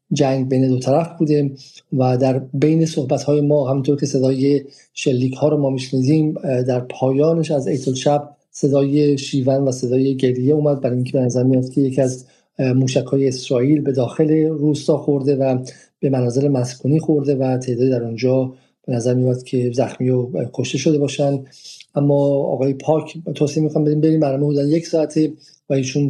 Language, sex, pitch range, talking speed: Persian, male, 130-150 Hz, 170 wpm